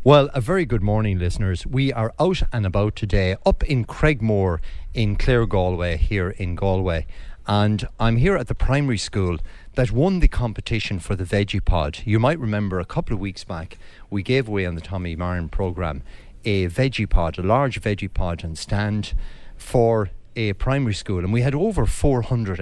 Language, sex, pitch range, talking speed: English, male, 90-125 Hz, 185 wpm